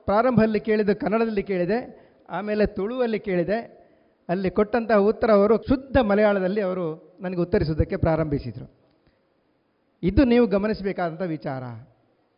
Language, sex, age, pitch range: Kannada, male, 40-59, 190-235 Hz